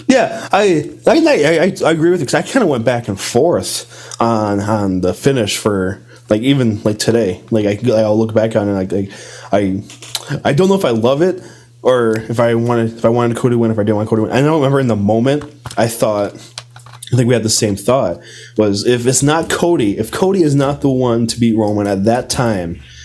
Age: 20-39